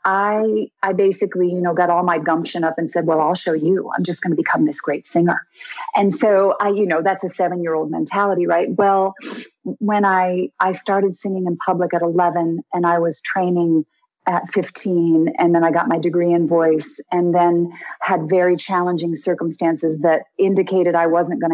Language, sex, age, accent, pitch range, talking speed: English, female, 40-59, American, 170-215 Hz, 190 wpm